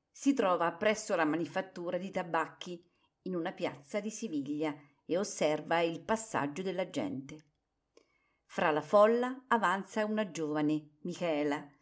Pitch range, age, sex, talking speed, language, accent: 155-215 Hz, 50-69, female, 125 wpm, Italian, native